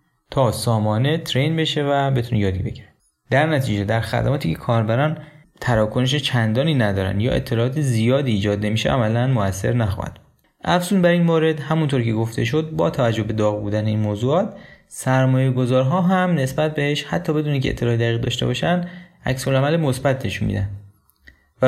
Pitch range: 110-145 Hz